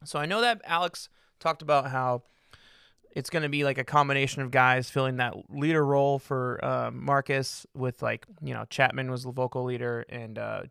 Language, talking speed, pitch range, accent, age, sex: English, 195 wpm, 125-150 Hz, American, 20-39, male